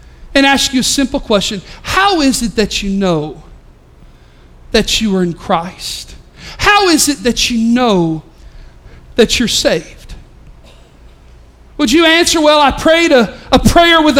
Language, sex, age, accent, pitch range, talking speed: English, male, 40-59, American, 210-325 Hz, 150 wpm